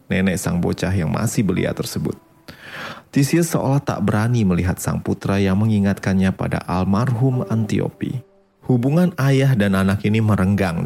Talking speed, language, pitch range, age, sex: 140 wpm, Indonesian, 100-130 Hz, 30-49, male